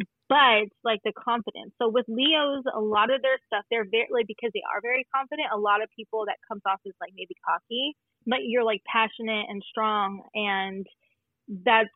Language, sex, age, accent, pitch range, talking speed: English, female, 20-39, American, 200-230 Hz, 190 wpm